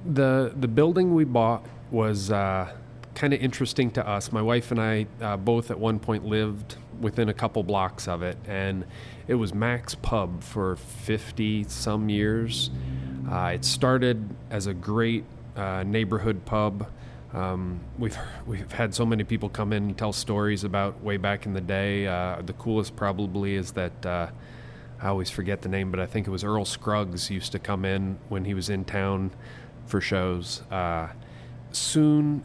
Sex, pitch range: male, 100-120 Hz